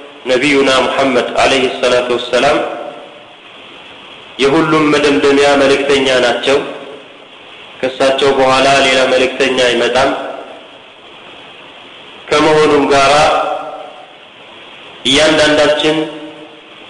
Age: 50-69